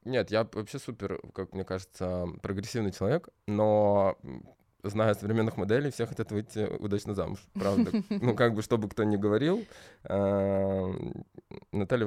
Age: 20-39